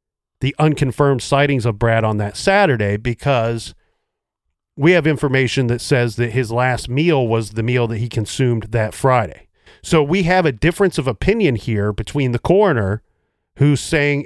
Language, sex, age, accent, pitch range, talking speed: English, male, 40-59, American, 115-150 Hz, 165 wpm